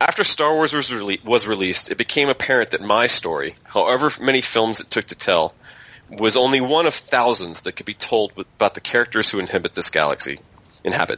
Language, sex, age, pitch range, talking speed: English, male, 30-49, 100-130 Hz, 200 wpm